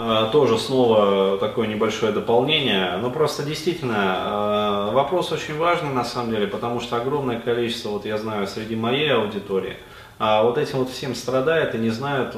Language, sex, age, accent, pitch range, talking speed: Russian, male, 30-49, native, 115-160 Hz, 155 wpm